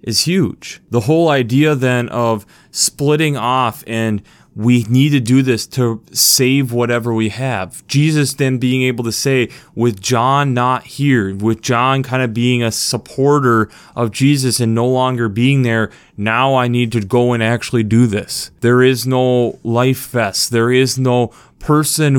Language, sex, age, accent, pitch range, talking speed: English, male, 20-39, American, 115-135 Hz, 170 wpm